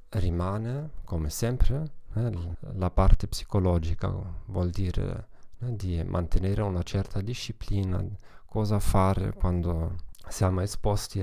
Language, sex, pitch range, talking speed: Italian, male, 90-105 Hz, 105 wpm